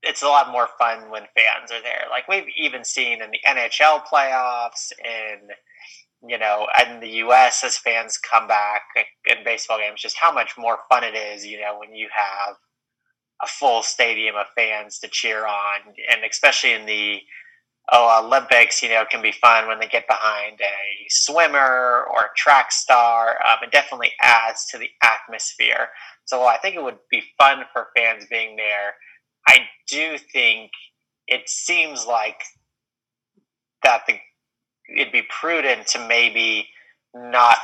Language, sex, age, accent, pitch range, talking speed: English, male, 30-49, American, 105-120 Hz, 165 wpm